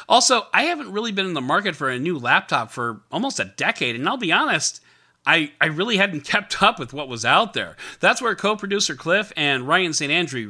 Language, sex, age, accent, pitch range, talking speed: English, male, 40-59, American, 125-185 Hz, 225 wpm